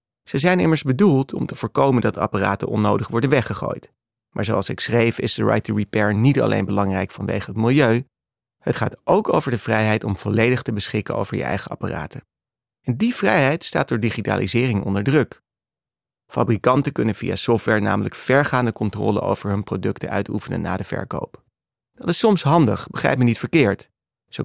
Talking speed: 175 wpm